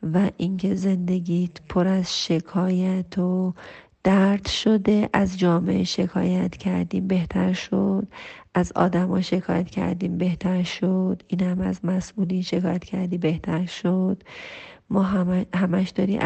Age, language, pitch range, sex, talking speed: 40-59, Persian, 180-200 Hz, female, 120 wpm